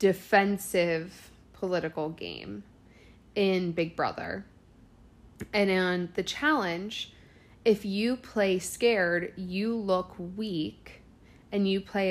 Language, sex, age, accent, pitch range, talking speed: English, female, 20-39, American, 160-205 Hz, 100 wpm